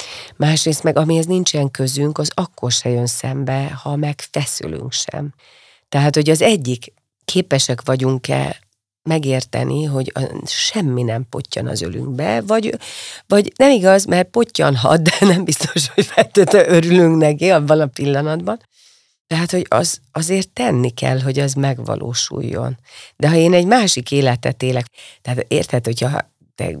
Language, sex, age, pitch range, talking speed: Hungarian, female, 40-59, 125-160 Hz, 145 wpm